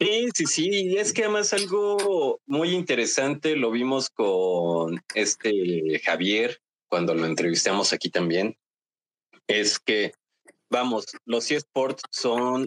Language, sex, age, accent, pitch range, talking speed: Spanish, male, 30-49, Mexican, 100-135 Hz, 125 wpm